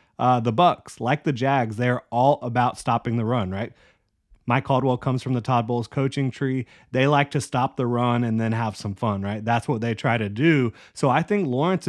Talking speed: 220 wpm